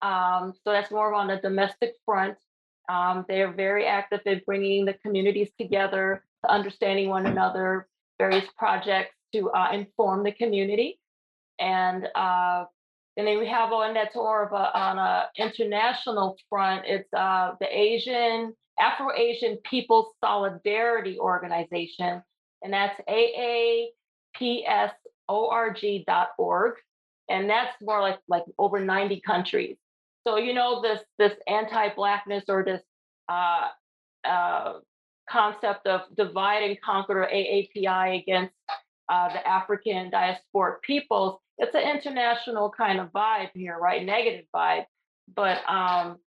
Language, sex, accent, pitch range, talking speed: English, female, American, 190-225 Hz, 125 wpm